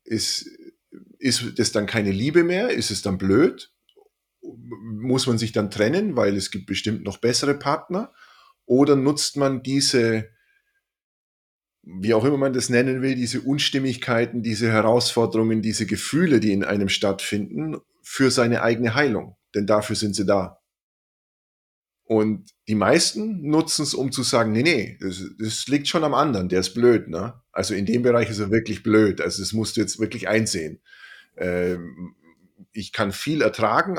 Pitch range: 105-130 Hz